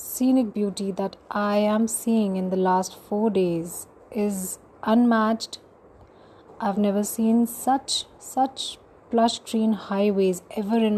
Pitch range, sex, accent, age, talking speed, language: 195-235 Hz, female, Indian, 30-49, 125 wpm, English